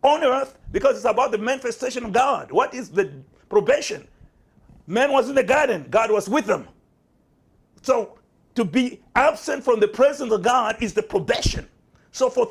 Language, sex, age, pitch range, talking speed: English, male, 50-69, 210-270 Hz, 175 wpm